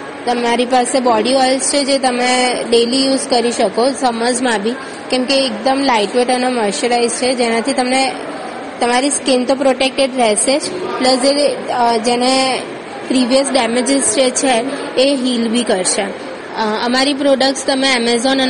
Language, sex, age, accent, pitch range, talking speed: Gujarati, female, 20-39, native, 235-260 Hz, 125 wpm